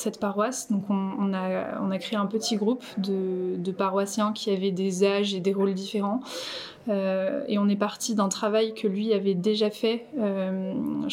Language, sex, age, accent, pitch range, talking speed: French, female, 20-39, French, 200-220 Hz, 195 wpm